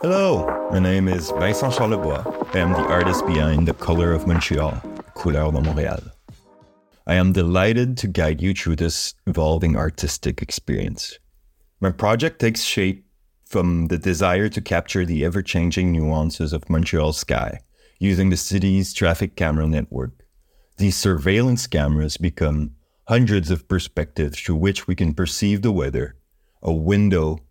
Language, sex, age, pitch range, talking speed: French, male, 30-49, 75-95 Hz, 145 wpm